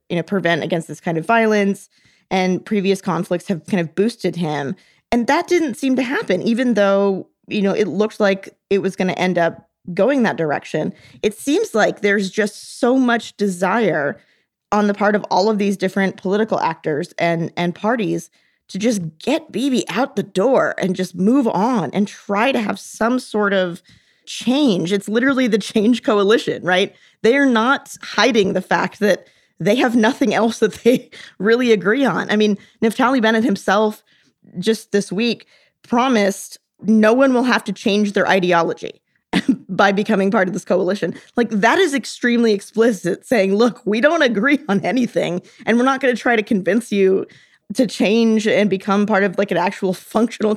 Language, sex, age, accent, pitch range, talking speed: English, female, 20-39, American, 190-230 Hz, 180 wpm